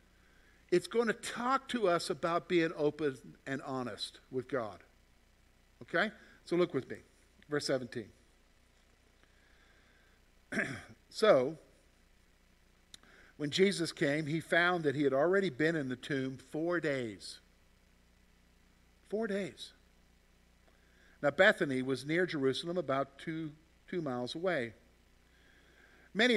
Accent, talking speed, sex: American, 110 wpm, male